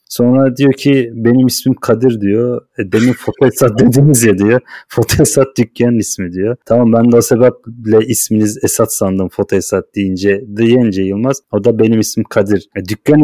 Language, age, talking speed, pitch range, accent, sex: Turkish, 30-49, 175 wpm, 100-120 Hz, native, male